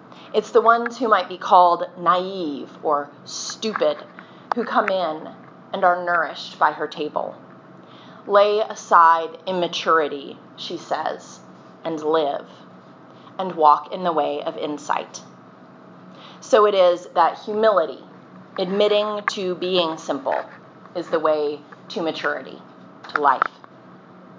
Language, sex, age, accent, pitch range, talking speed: English, female, 30-49, American, 160-210 Hz, 120 wpm